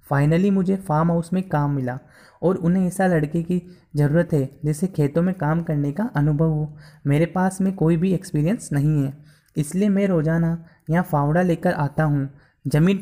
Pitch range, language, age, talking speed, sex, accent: 150-180 Hz, Hindi, 20-39, 180 wpm, male, native